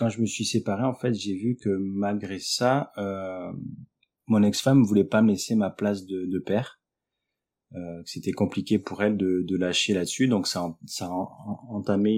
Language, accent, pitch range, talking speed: French, French, 95-110 Hz, 180 wpm